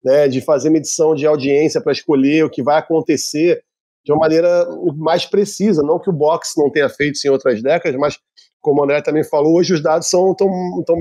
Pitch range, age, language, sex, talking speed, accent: 150-190 Hz, 40-59, Portuguese, male, 215 wpm, Brazilian